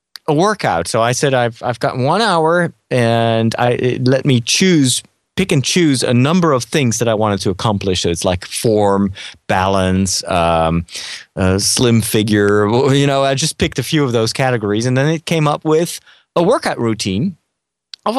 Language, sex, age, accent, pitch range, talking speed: English, male, 30-49, American, 110-150 Hz, 190 wpm